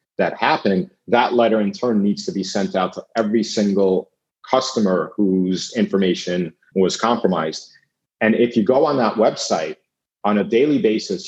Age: 40-59